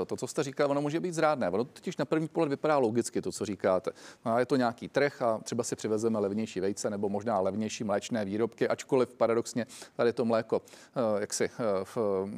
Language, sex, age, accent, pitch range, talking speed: Czech, male, 40-59, native, 115-135 Hz, 205 wpm